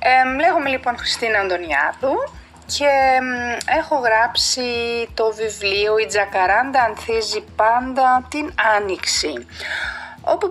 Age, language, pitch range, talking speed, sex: 30-49, Greek, 215-320 Hz, 95 wpm, female